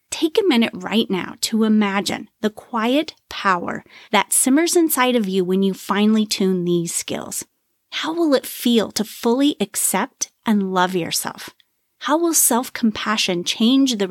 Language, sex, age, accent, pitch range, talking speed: English, female, 30-49, American, 200-270 Hz, 155 wpm